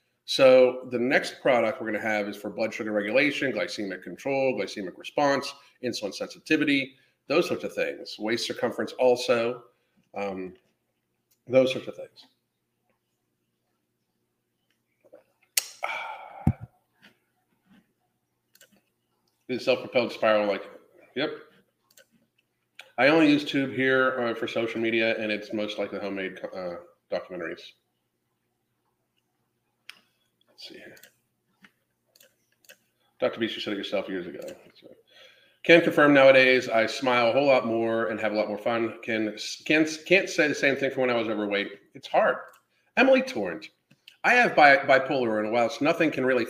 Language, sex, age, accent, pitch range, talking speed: English, male, 50-69, American, 105-130 Hz, 130 wpm